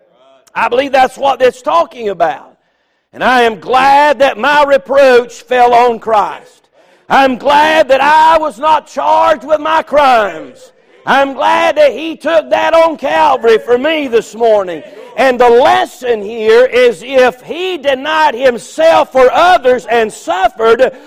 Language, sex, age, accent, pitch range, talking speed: English, male, 50-69, American, 230-310 Hz, 150 wpm